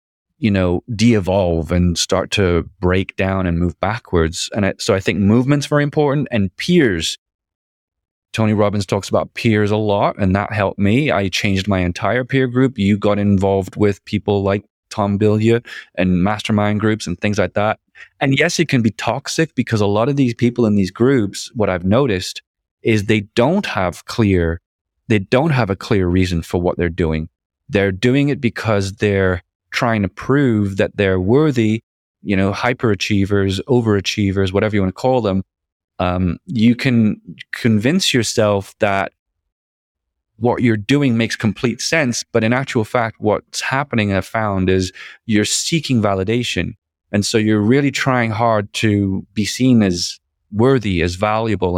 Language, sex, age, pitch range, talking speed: English, male, 20-39, 95-115 Hz, 170 wpm